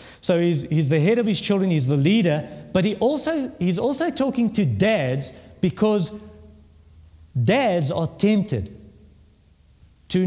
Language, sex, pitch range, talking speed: English, male, 120-200 Hz, 140 wpm